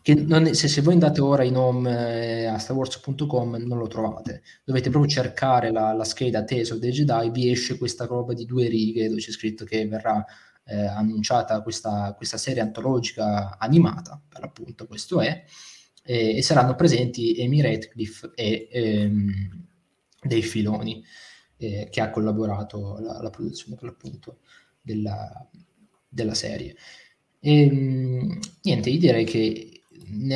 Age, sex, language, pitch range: 20-39, male, Italian, 110-135 Hz